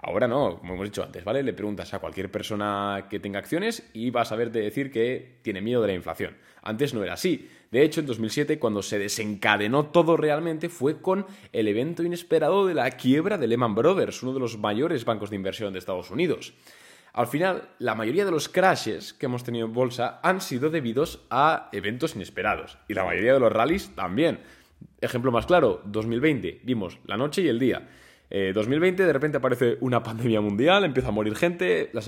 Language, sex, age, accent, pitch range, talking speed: Spanish, male, 20-39, Spanish, 105-150 Hz, 200 wpm